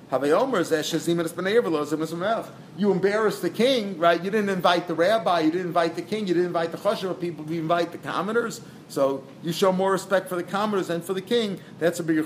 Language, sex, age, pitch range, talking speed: English, male, 40-59, 155-190 Hz, 195 wpm